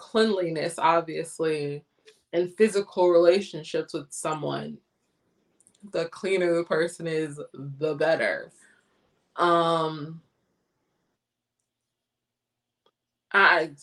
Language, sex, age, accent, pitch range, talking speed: English, female, 20-39, American, 160-195 Hz, 70 wpm